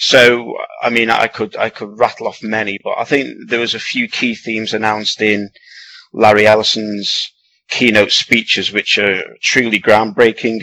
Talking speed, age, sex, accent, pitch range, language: 165 wpm, 30-49, male, British, 105-120 Hz, English